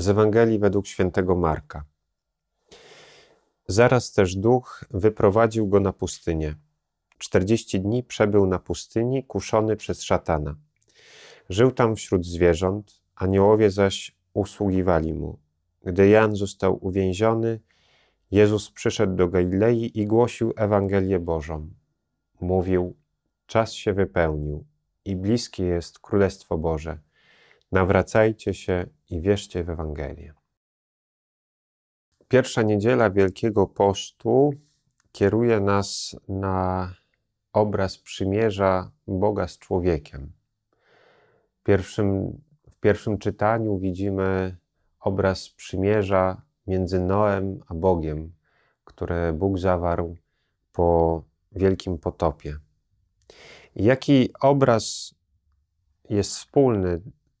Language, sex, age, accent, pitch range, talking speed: Polish, male, 30-49, native, 85-110 Hz, 95 wpm